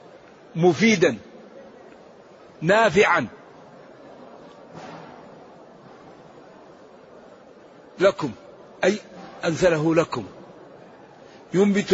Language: Arabic